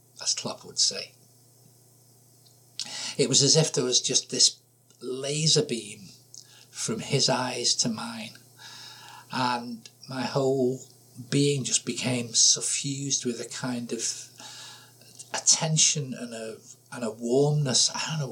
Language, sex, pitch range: English, male, 120-135 Hz